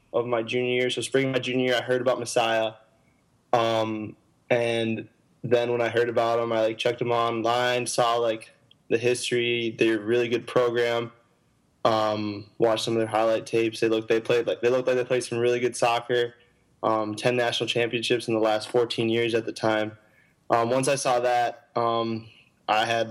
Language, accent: English, American